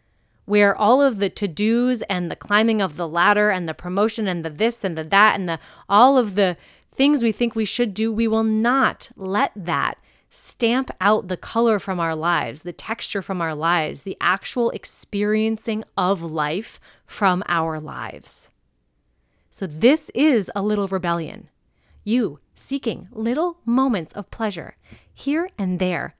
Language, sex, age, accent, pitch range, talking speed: English, female, 30-49, American, 155-225 Hz, 165 wpm